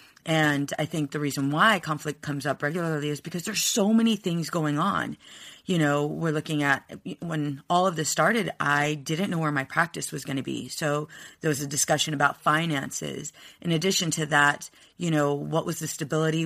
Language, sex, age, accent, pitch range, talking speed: English, female, 30-49, American, 150-180 Hz, 200 wpm